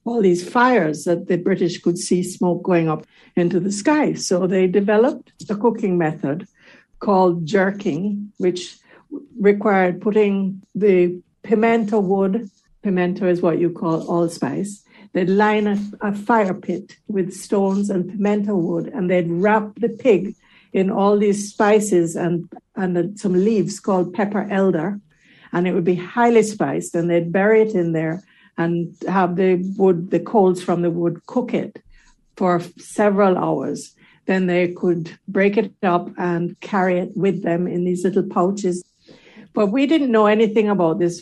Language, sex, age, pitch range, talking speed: English, female, 60-79, 175-205 Hz, 160 wpm